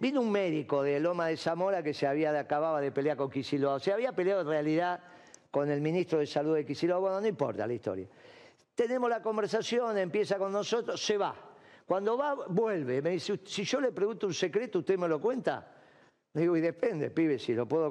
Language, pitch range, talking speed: Spanish, 155-235 Hz, 215 wpm